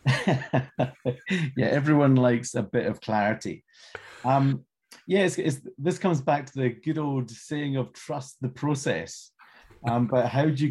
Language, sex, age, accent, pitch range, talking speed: English, male, 40-59, British, 100-130 Hz, 165 wpm